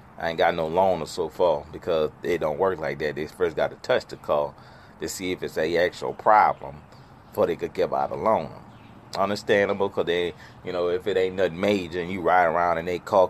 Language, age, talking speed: English, 30-49, 225 wpm